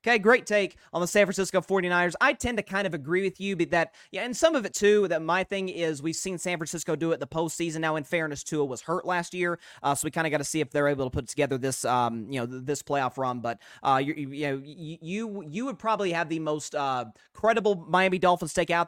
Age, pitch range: 30-49, 145-190 Hz